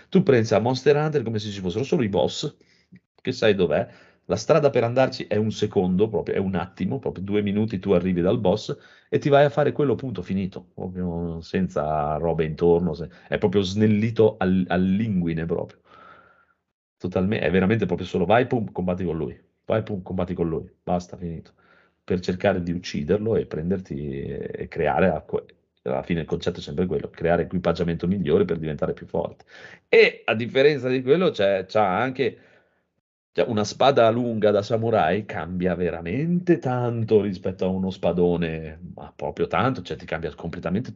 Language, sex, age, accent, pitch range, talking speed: Italian, male, 40-59, native, 85-110 Hz, 175 wpm